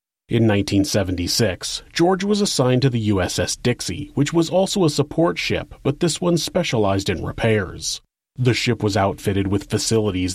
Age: 30-49